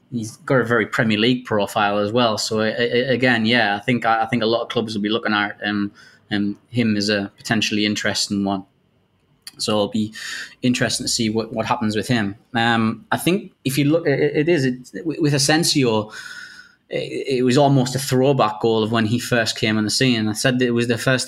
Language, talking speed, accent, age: English, 225 wpm, British, 20-39